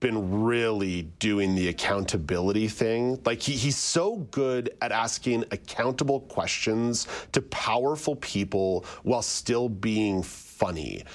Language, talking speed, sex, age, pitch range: English, 115 wpm, male, 40-59, 95-125 Hz